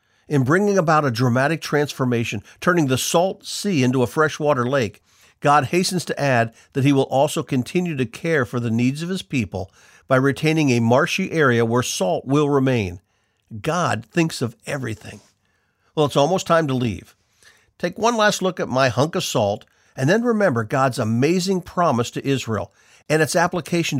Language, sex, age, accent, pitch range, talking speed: English, male, 50-69, American, 120-170 Hz, 175 wpm